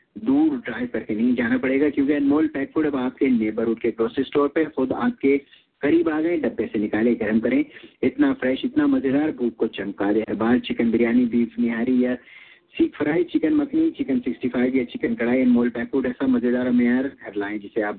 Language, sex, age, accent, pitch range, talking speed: English, male, 50-69, Indian, 120-150 Hz, 145 wpm